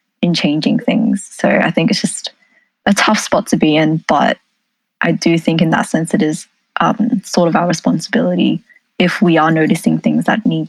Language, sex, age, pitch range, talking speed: English, female, 10-29, 170-230 Hz, 195 wpm